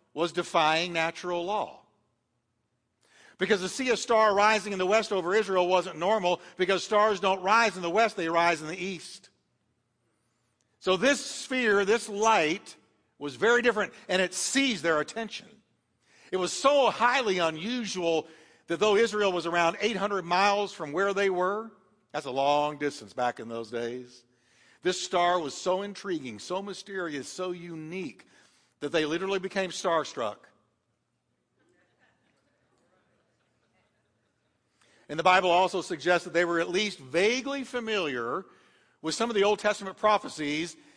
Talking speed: 145 wpm